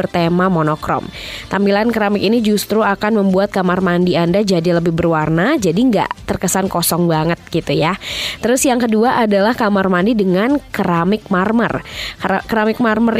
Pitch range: 180-225 Hz